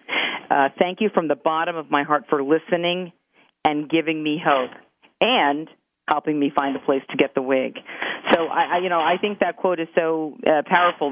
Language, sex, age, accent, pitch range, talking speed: English, female, 40-59, American, 145-170 Hz, 195 wpm